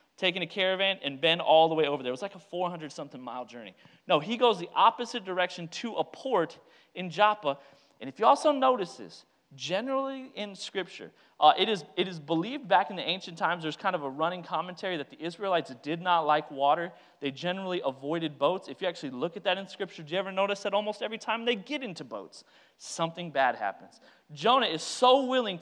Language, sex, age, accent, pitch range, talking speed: English, male, 30-49, American, 165-235 Hz, 210 wpm